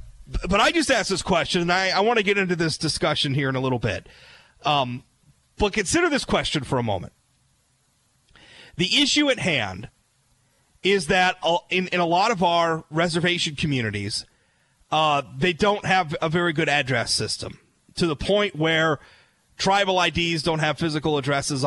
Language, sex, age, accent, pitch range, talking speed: English, male, 30-49, American, 155-210 Hz, 170 wpm